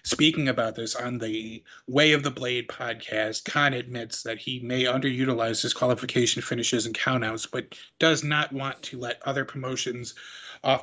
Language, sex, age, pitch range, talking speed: English, male, 30-49, 120-140 Hz, 160 wpm